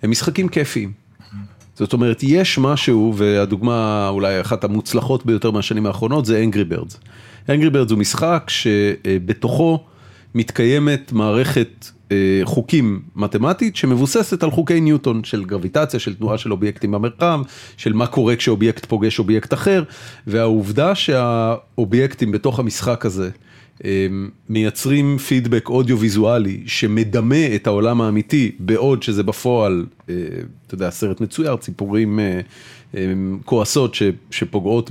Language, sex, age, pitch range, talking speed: Hebrew, male, 40-59, 105-130 Hz, 115 wpm